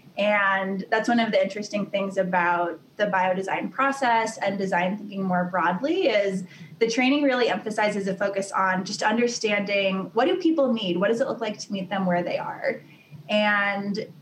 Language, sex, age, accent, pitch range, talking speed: English, female, 20-39, American, 185-215 Hz, 175 wpm